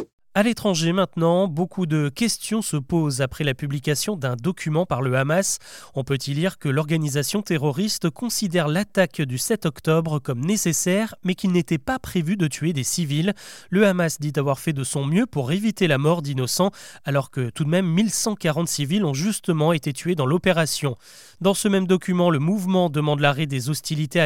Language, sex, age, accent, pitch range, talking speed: French, male, 30-49, French, 145-195 Hz, 185 wpm